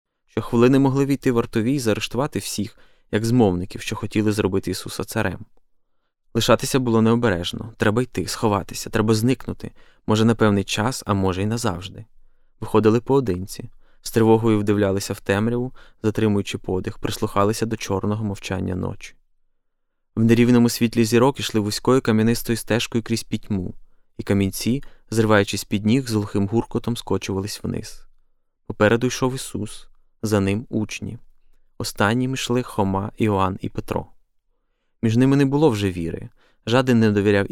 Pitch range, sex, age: 100-120 Hz, male, 20-39